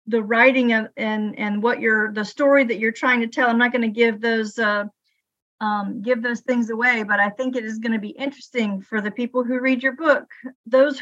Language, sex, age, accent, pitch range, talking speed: English, female, 40-59, American, 220-265 Hz, 235 wpm